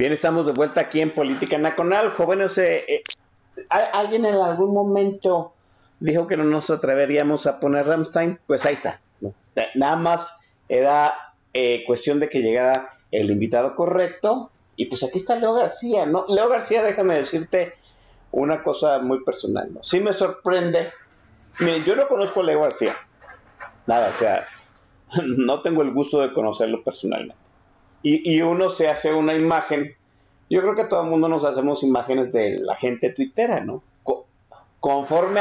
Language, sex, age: Spanish, male, 50-69